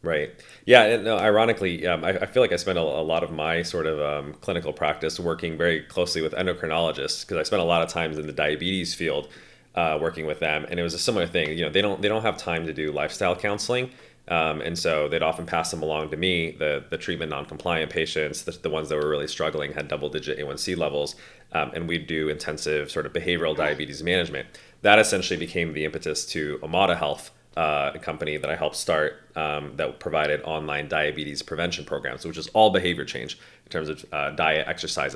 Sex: male